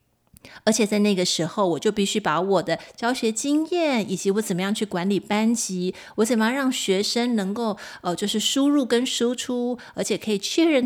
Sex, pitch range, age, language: female, 180-230 Hz, 30-49, Chinese